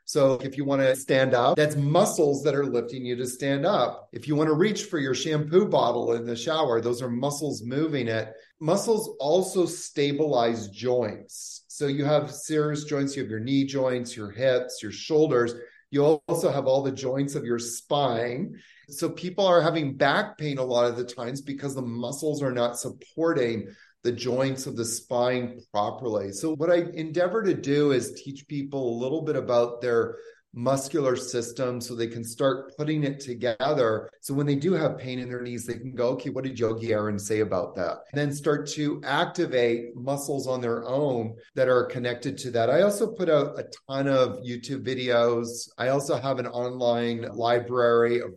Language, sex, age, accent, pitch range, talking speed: English, male, 30-49, American, 120-145 Hz, 195 wpm